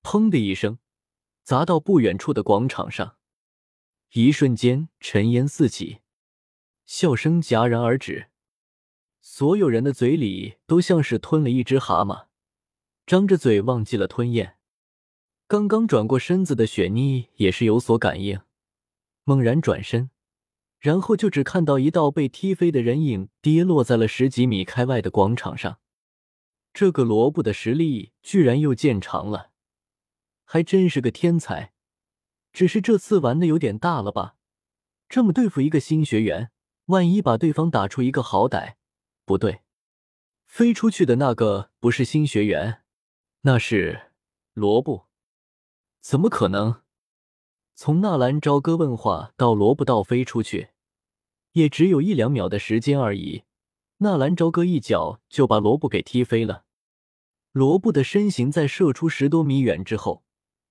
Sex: male